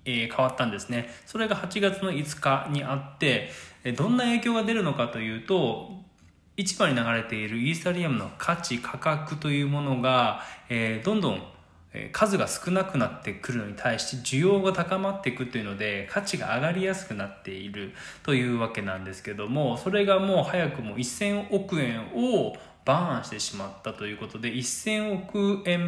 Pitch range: 115-190 Hz